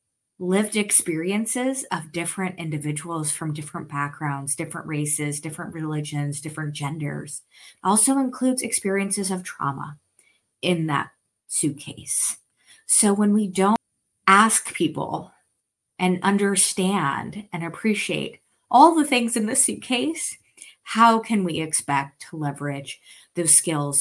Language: English